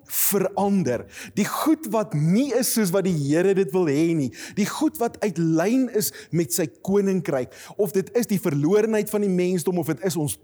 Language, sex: English, male